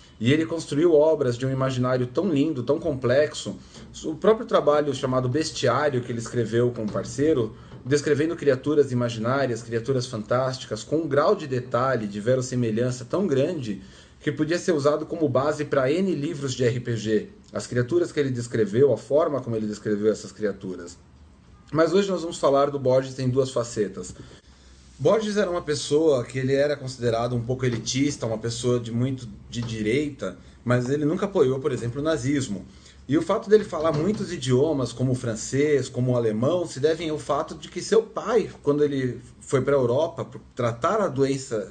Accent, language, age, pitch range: Brazilian, Portuguese, 30-49, 120-155 Hz